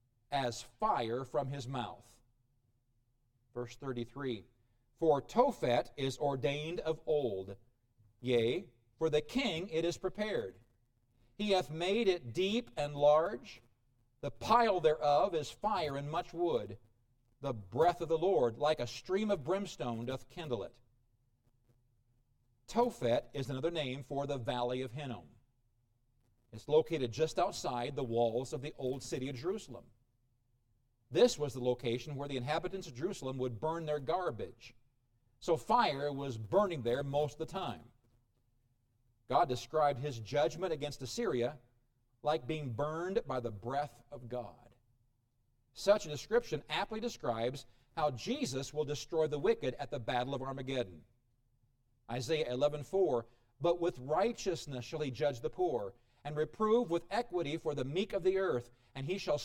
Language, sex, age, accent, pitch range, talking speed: English, male, 50-69, American, 120-155 Hz, 145 wpm